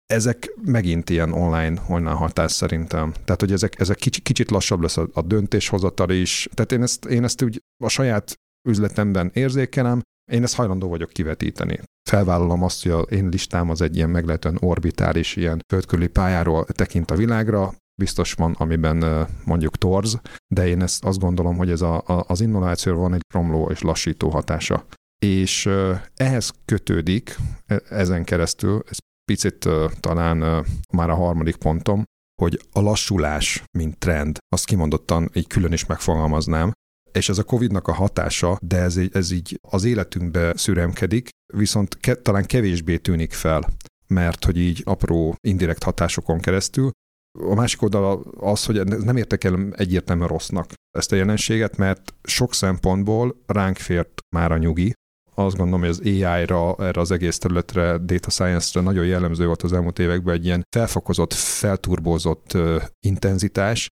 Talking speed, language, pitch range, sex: 155 wpm, Hungarian, 85-100 Hz, male